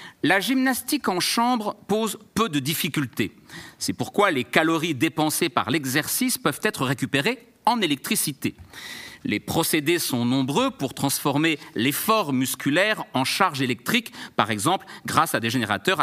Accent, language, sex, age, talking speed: French, French, male, 50-69, 140 wpm